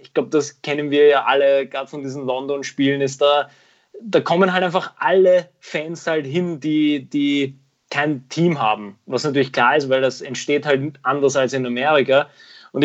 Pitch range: 135-160 Hz